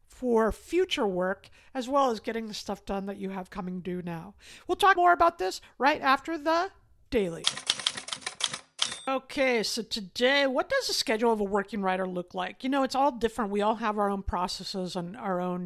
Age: 50-69